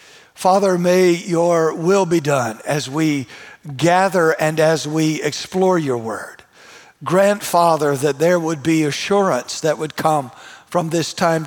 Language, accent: English, American